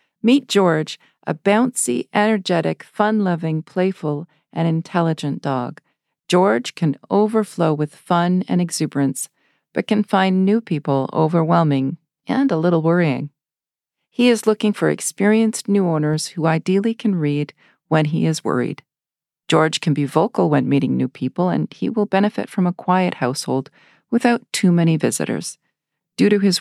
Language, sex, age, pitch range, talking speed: English, female, 50-69, 150-190 Hz, 145 wpm